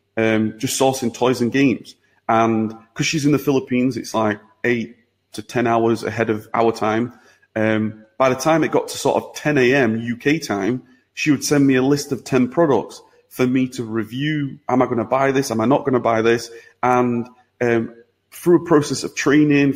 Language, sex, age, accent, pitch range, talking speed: English, male, 30-49, British, 115-135 Hz, 205 wpm